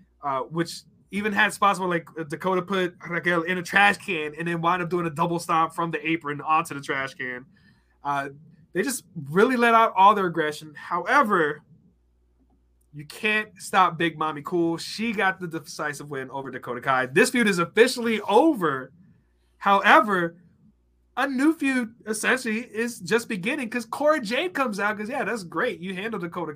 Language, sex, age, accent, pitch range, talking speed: English, male, 20-39, American, 155-210 Hz, 175 wpm